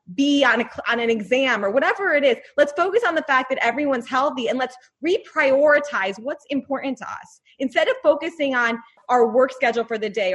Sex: female